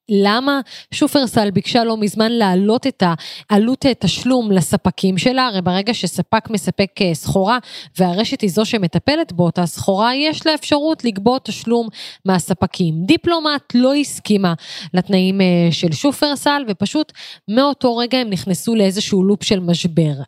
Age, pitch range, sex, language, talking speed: 20-39, 195-265 Hz, female, Hebrew, 125 wpm